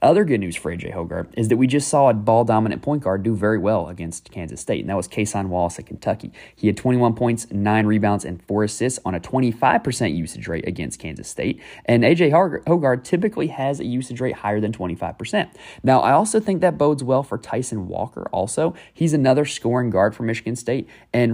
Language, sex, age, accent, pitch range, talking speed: English, male, 30-49, American, 95-130 Hz, 215 wpm